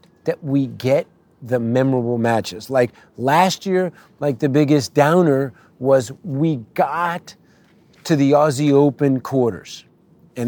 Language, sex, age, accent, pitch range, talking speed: English, male, 40-59, American, 130-160 Hz, 125 wpm